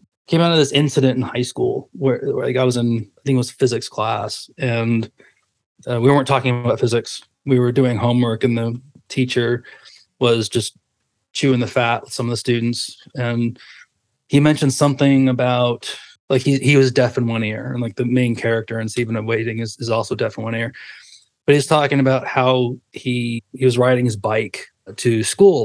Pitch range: 115-135 Hz